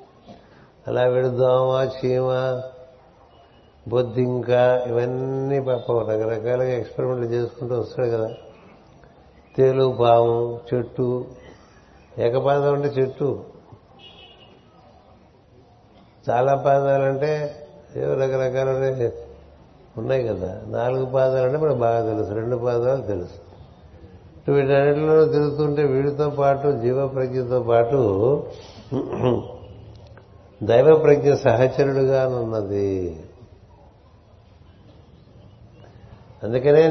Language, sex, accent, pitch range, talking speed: Telugu, male, native, 110-130 Hz, 75 wpm